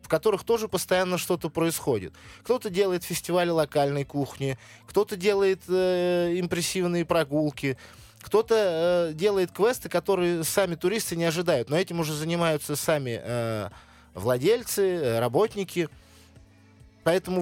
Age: 20-39